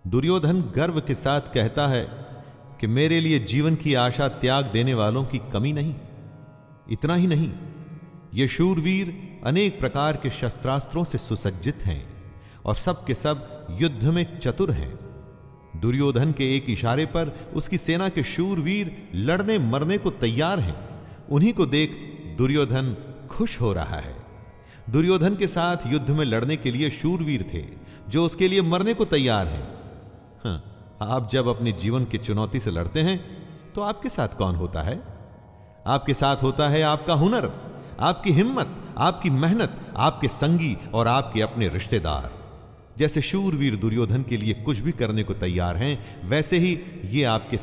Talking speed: 155 wpm